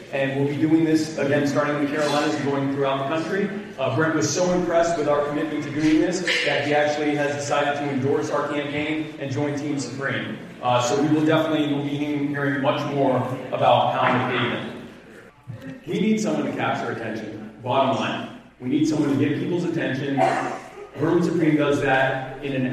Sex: male